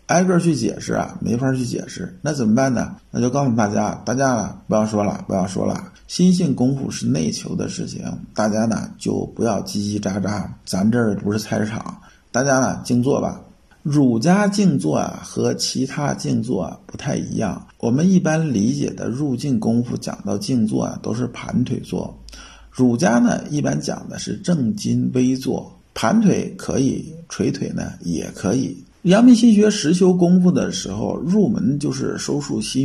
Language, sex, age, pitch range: Chinese, male, 50-69, 115-175 Hz